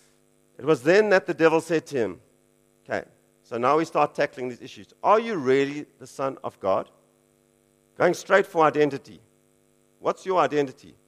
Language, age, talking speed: English, 50-69, 170 wpm